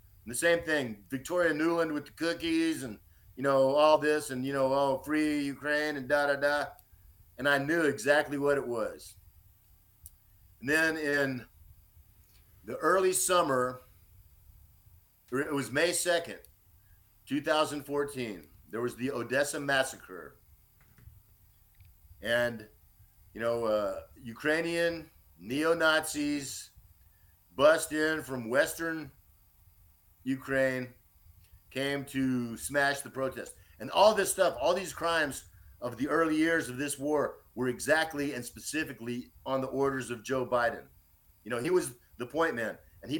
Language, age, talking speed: English, 50-69, 135 wpm